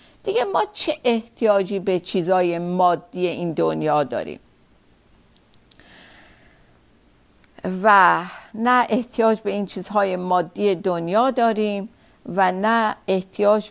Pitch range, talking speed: 185-225 Hz, 95 wpm